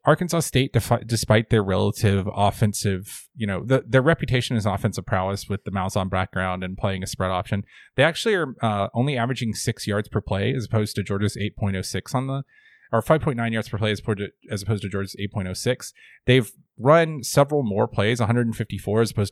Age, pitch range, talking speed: 30-49, 100-125 Hz, 195 wpm